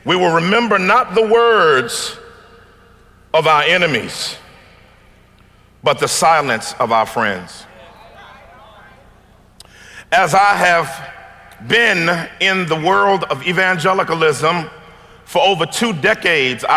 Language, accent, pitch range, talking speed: English, American, 175-220 Hz, 100 wpm